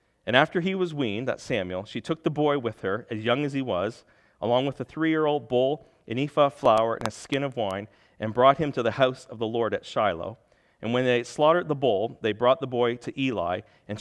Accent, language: American, English